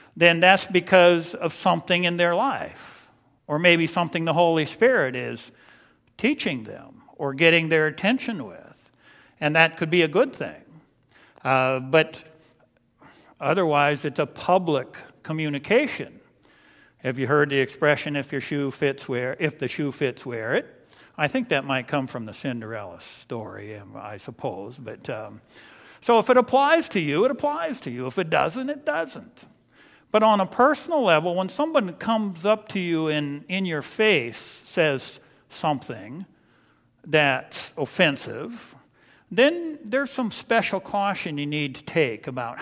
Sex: male